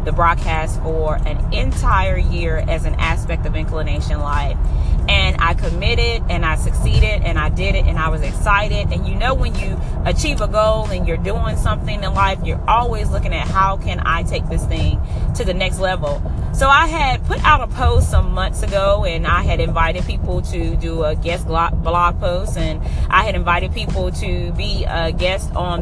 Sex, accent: female, American